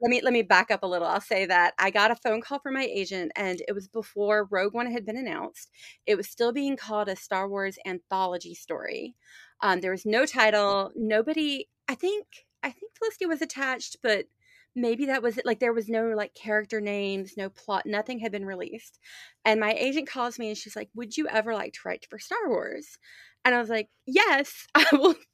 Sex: female